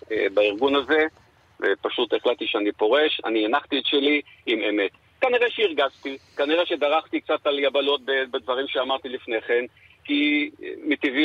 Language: Hebrew